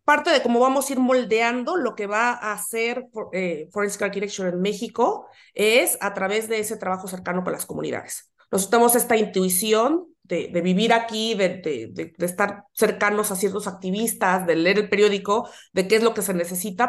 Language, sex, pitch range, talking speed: Spanish, female, 180-220 Hz, 195 wpm